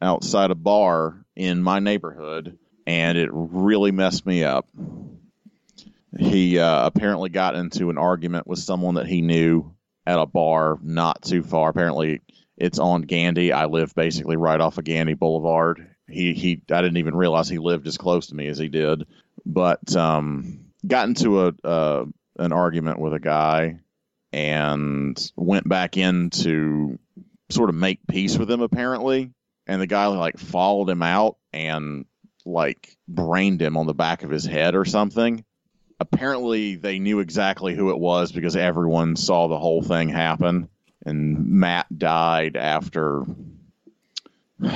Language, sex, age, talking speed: English, male, 30-49, 160 wpm